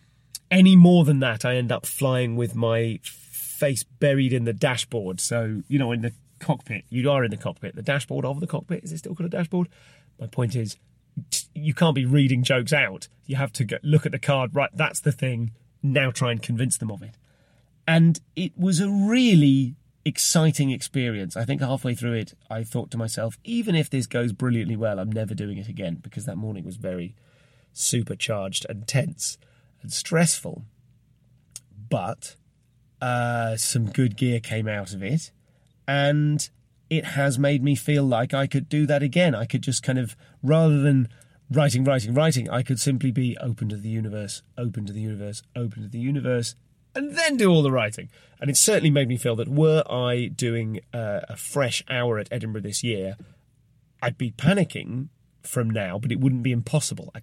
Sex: male